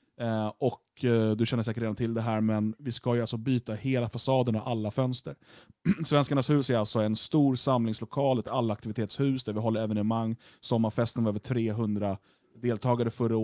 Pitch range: 110-135 Hz